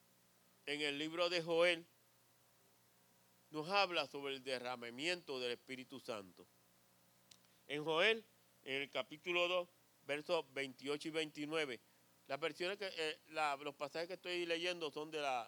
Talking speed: 140 wpm